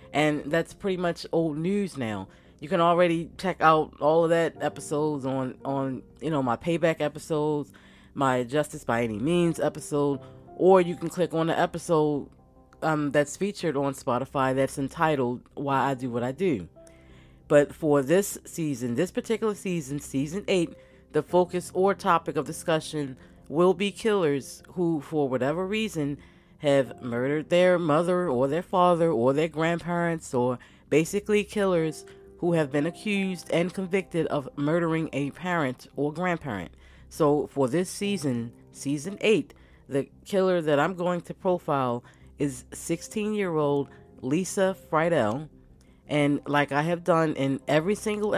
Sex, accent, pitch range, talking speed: female, American, 135-175 Hz, 150 wpm